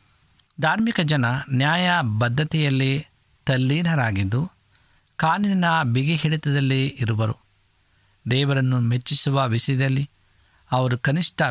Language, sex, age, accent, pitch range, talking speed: Kannada, male, 50-69, native, 110-145 Hz, 70 wpm